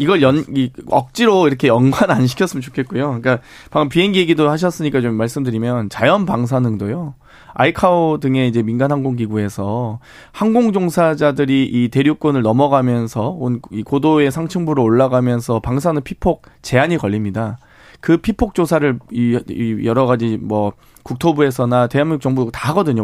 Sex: male